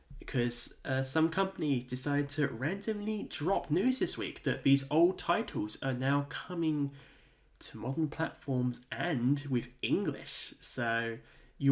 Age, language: 10-29, English